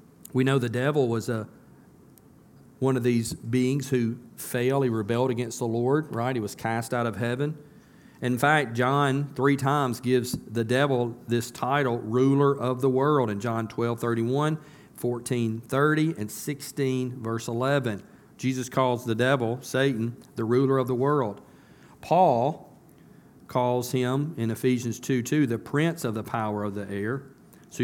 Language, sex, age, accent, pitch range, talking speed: English, male, 40-59, American, 115-135 Hz, 160 wpm